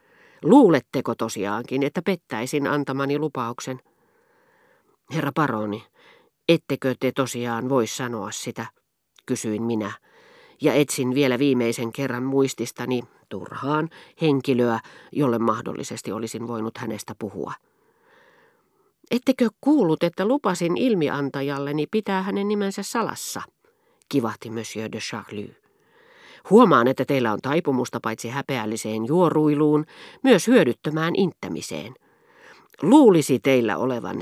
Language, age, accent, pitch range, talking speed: Finnish, 40-59, native, 120-165 Hz, 100 wpm